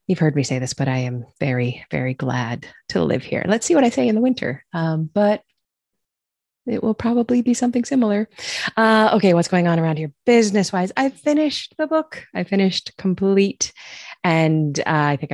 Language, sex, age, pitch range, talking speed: English, female, 30-49, 135-195 Hz, 190 wpm